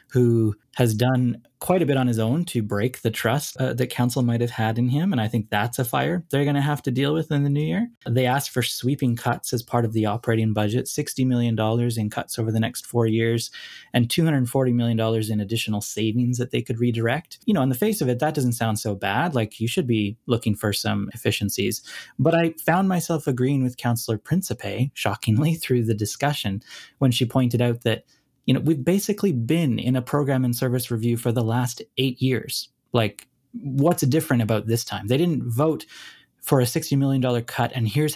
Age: 20-39